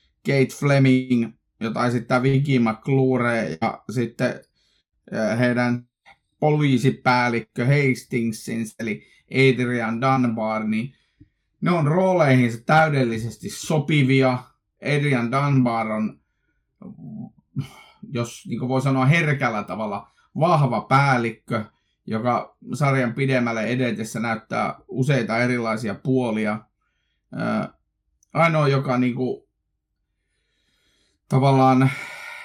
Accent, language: native, Finnish